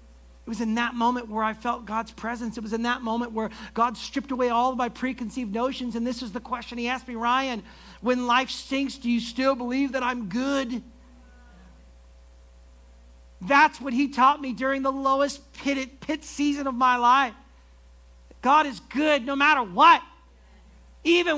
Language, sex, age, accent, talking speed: English, male, 50-69, American, 180 wpm